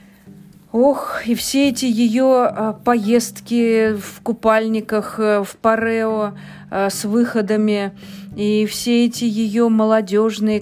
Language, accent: Russian, native